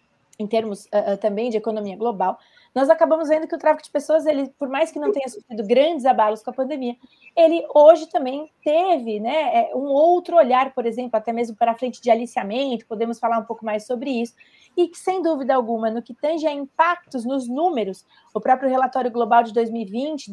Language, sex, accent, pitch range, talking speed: Portuguese, female, Brazilian, 230-290 Hz, 205 wpm